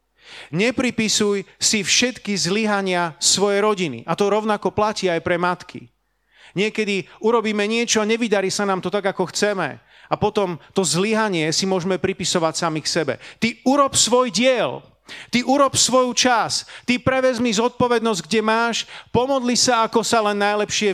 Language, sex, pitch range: Slovak, male, 180-230 Hz